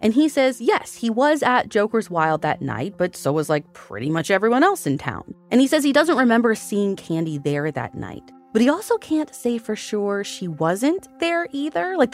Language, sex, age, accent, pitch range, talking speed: English, female, 20-39, American, 150-235 Hz, 220 wpm